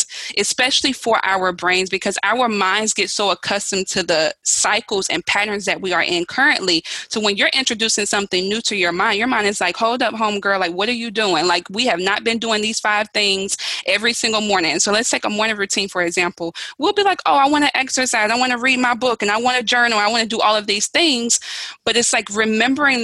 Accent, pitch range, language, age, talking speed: American, 190-230 Hz, English, 20-39, 240 wpm